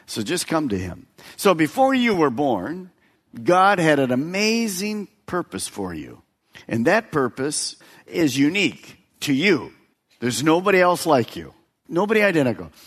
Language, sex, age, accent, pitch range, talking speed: English, male, 50-69, American, 110-170 Hz, 145 wpm